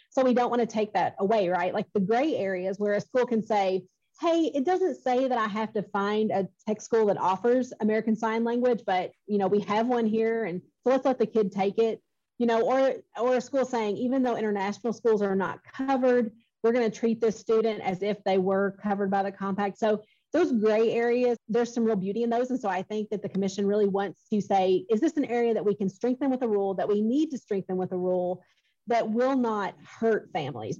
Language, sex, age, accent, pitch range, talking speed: English, female, 30-49, American, 195-235 Hz, 240 wpm